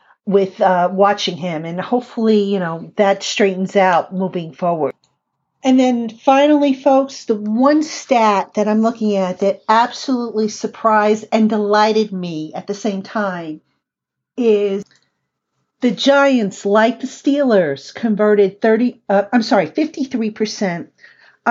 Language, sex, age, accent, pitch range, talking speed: English, female, 50-69, American, 195-240 Hz, 130 wpm